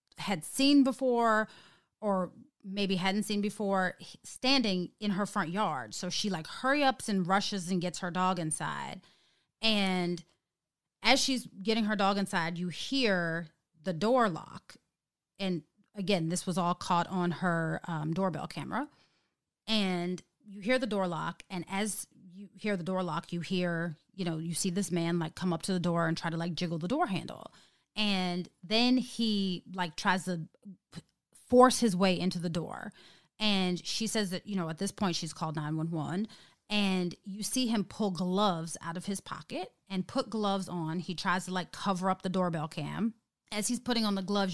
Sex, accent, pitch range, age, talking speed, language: female, American, 175-210 Hz, 30-49, 185 wpm, English